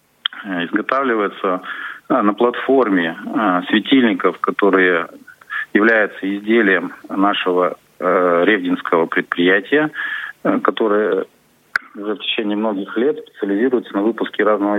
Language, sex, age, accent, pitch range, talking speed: Russian, male, 40-59, native, 95-120 Hz, 80 wpm